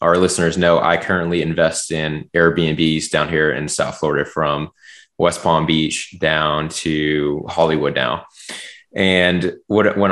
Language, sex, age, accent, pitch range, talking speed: English, male, 20-39, American, 85-100 Hz, 140 wpm